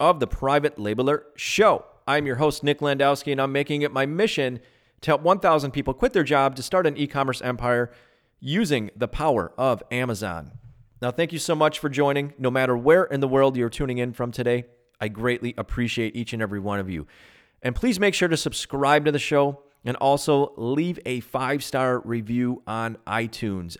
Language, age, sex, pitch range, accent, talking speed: English, 30-49, male, 120-150 Hz, American, 195 wpm